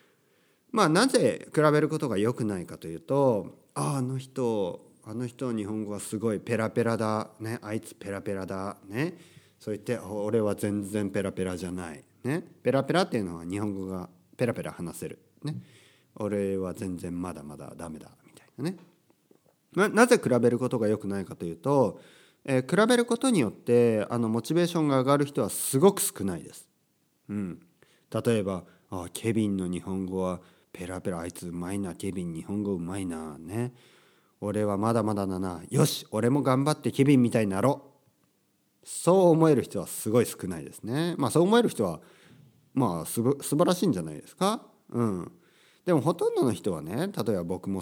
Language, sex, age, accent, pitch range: Japanese, male, 40-59, native, 95-145 Hz